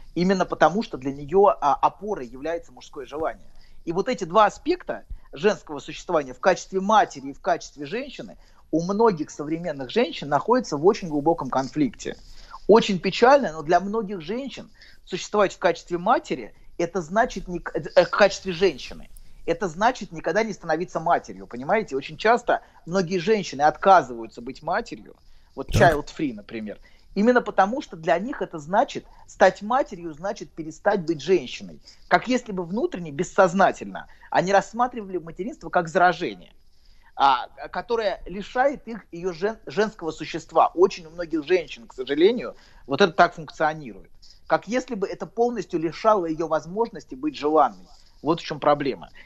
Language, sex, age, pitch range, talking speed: Russian, male, 30-49, 160-215 Hz, 145 wpm